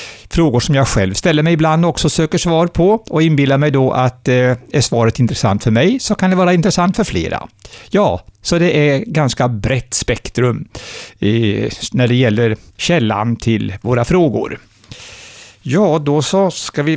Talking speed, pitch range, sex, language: 175 wpm, 115-155 Hz, male, Swedish